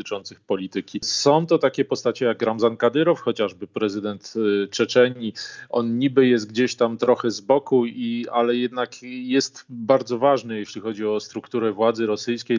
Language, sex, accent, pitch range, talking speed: Polish, male, native, 110-130 Hz, 150 wpm